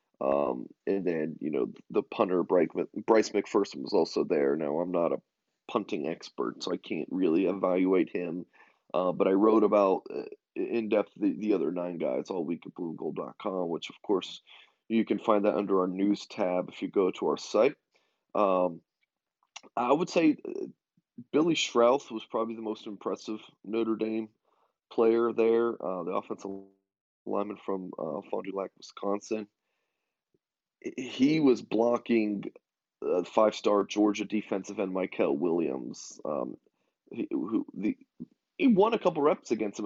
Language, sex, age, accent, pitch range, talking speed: English, male, 20-39, American, 100-120 Hz, 155 wpm